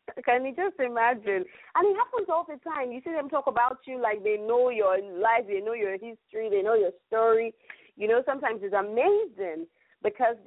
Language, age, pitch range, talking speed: English, 30-49, 185-280 Hz, 200 wpm